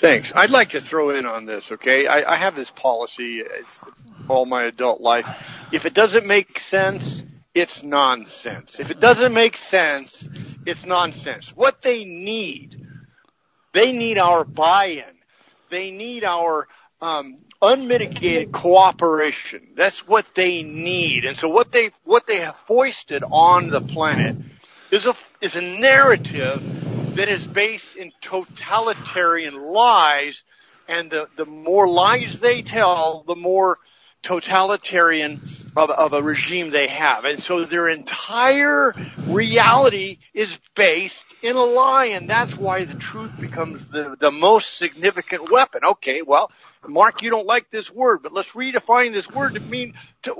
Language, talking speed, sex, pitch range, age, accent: English, 150 wpm, male, 155-230 Hz, 50-69, American